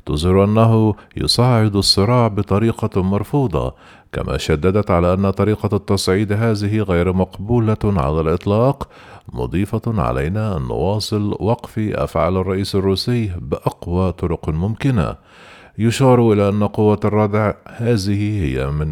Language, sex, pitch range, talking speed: Arabic, male, 90-110 Hz, 115 wpm